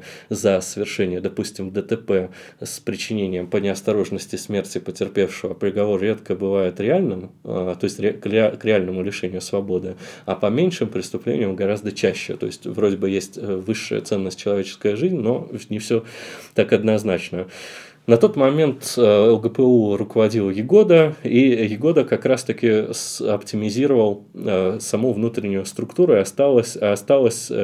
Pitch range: 100-120 Hz